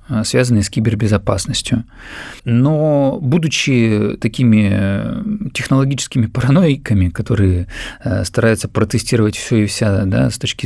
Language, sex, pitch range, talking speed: Russian, male, 105-140 Hz, 90 wpm